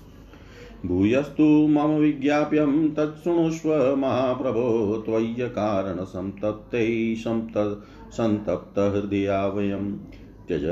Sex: male